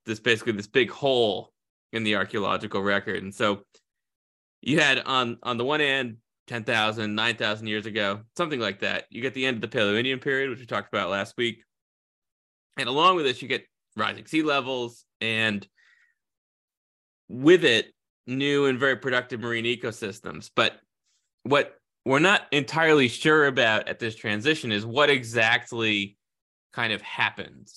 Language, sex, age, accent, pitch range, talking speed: English, male, 20-39, American, 105-130 Hz, 160 wpm